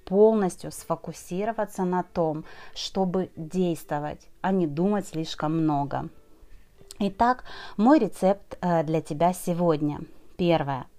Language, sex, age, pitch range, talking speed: Russian, female, 30-49, 165-210 Hz, 100 wpm